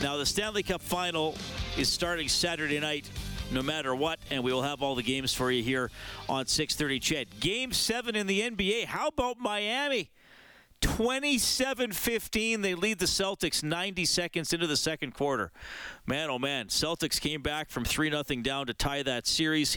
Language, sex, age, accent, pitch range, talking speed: English, male, 40-59, American, 125-165 Hz, 175 wpm